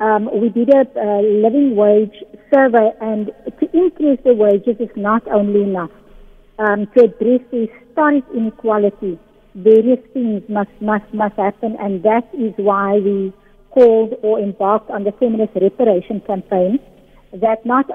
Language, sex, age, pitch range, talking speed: English, female, 60-79, 205-235 Hz, 145 wpm